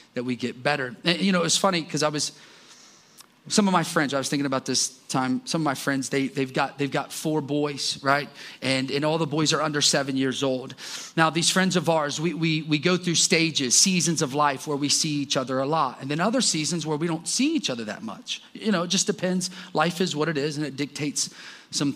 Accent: American